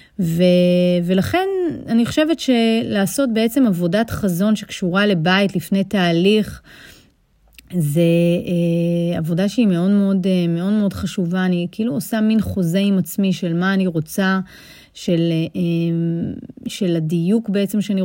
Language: Hebrew